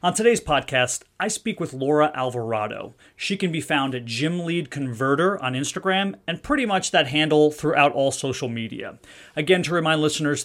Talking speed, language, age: 180 wpm, English, 30-49